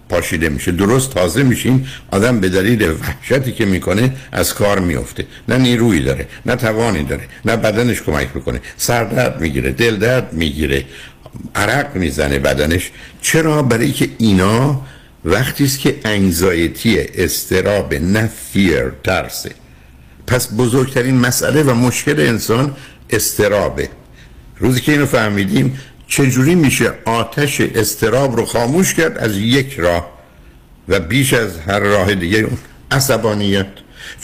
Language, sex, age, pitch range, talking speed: Persian, male, 60-79, 100-135 Hz, 125 wpm